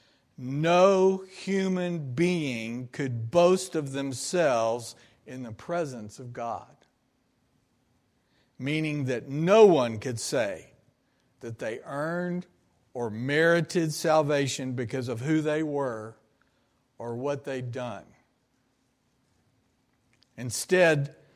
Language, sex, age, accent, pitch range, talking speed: English, male, 60-79, American, 125-160 Hz, 95 wpm